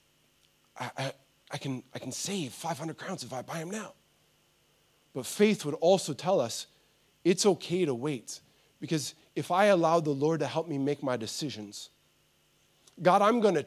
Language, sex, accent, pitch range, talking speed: English, male, American, 155-220 Hz, 170 wpm